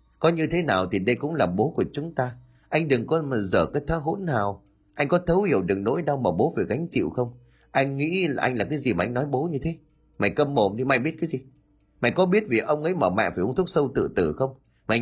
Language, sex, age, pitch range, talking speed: Vietnamese, male, 30-49, 95-155 Hz, 285 wpm